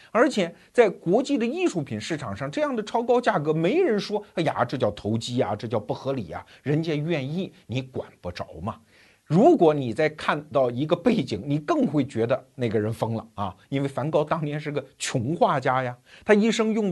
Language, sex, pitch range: Chinese, male, 120-185 Hz